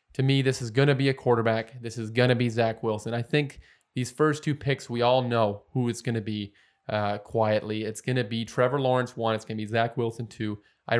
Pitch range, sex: 115-135 Hz, male